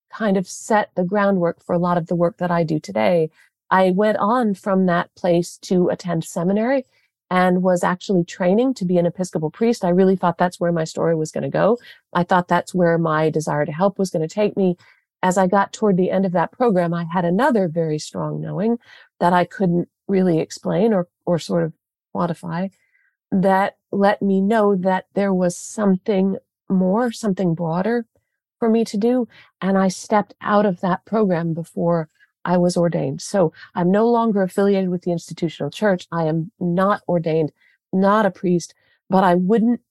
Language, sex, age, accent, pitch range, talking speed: English, female, 40-59, American, 175-210 Hz, 190 wpm